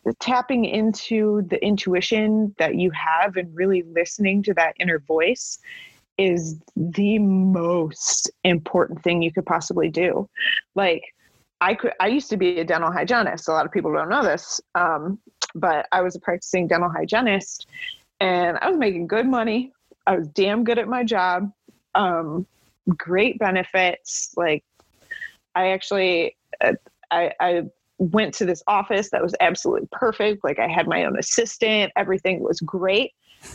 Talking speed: 155 wpm